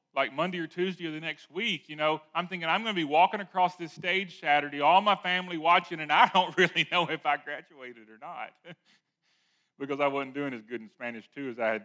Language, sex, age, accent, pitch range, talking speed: English, male, 40-59, American, 130-190 Hz, 240 wpm